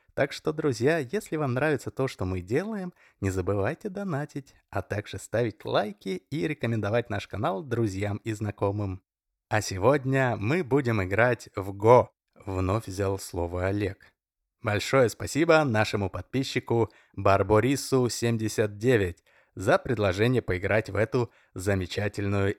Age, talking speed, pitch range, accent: 20-39, 125 wpm, 95-125 Hz, native